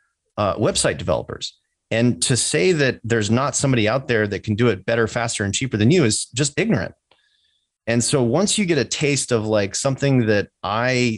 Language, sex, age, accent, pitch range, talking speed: English, male, 30-49, American, 105-130 Hz, 200 wpm